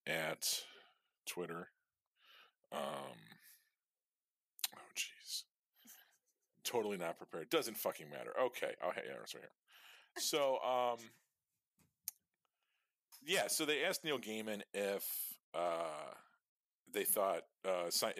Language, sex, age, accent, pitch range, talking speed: English, male, 40-59, American, 90-110 Hz, 95 wpm